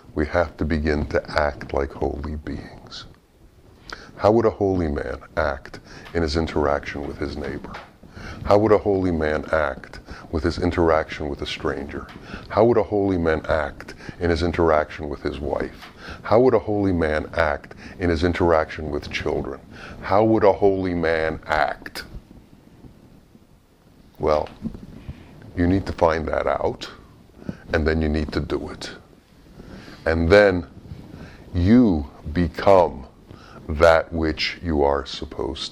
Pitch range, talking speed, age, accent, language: 80-95 Hz, 145 wpm, 50-69, American, English